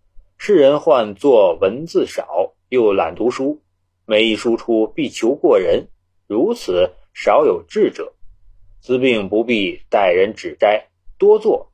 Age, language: 30-49, Chinese